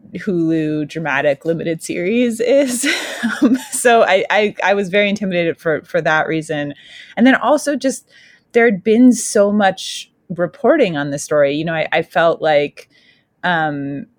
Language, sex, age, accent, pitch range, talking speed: English, female, 20-39, American, 145-185 Hz, 155 wpm